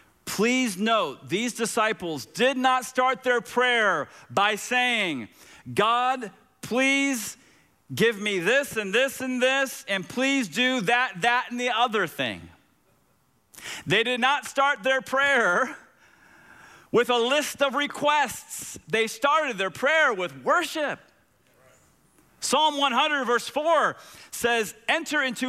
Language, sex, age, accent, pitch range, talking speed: English, male, 40-59, American, 220-285 Hz, 125 wpm